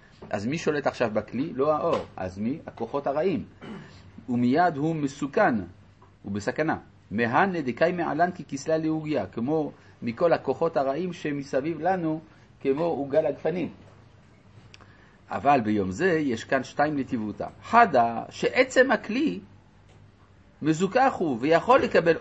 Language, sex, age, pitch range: Hebrew, male, 50-69, 115-185 Hz